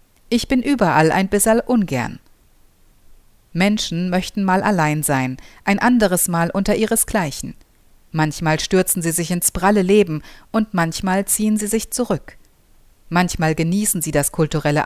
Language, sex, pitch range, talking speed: German, female, 155-205 Hz, 135 wpm